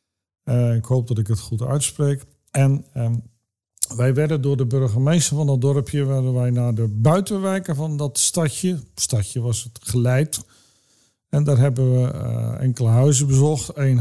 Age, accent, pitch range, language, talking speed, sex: 50-69, Dutch, 120-145 Hz, Dutch, 160 wpm, male